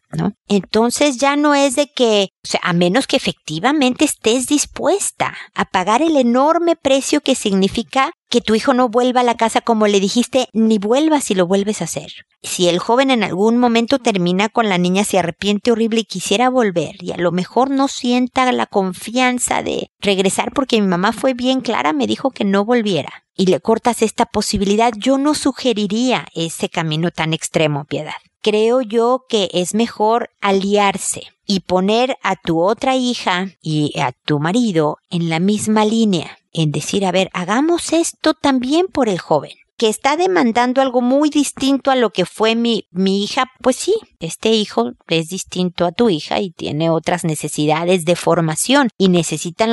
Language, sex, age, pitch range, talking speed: Spanish, female, 50-69, 180-255 Hz, 180 wpm